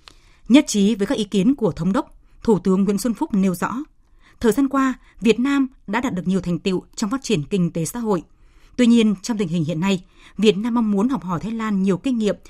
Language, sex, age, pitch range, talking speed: Vietnamese, female, 20-39, 185-240 Hz, 250 wpm